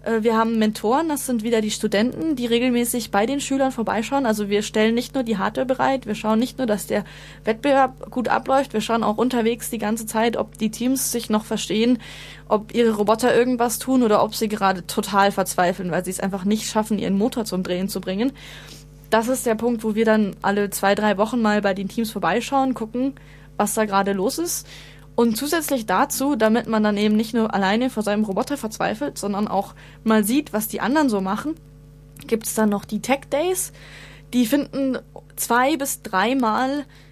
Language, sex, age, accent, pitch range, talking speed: German, female, 20-39, German, 205-255 Hz, 200 wpm